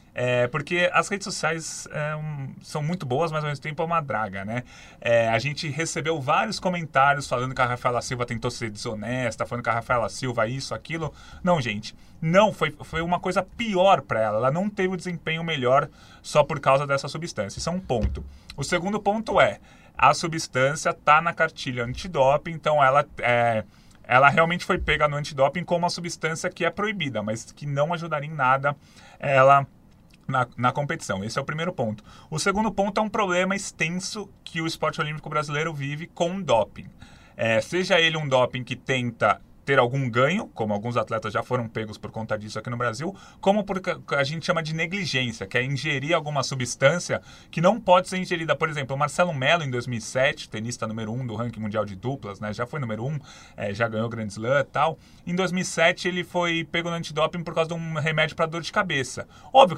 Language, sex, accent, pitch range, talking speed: Portuguese, male, Brazilian, 125-175 Hz, 195 wpm